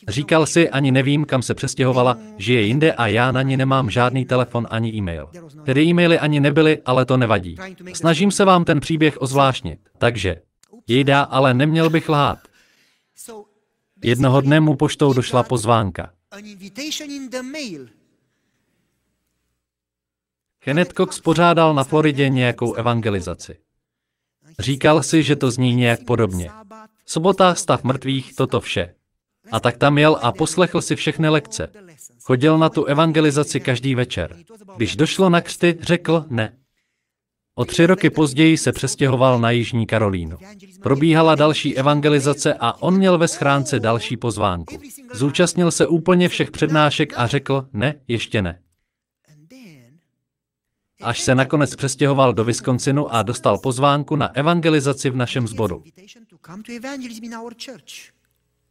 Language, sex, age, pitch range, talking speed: Slovak, male, 40-59, 120-165 Hz, 130 wpm